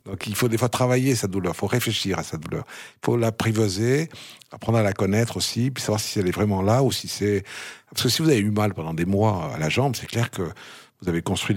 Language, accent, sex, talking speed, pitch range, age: French, French, male, 270 wpm, 95-130 Hz, 50-69